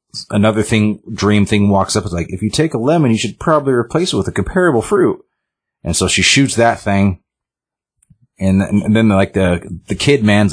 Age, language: 30-49, English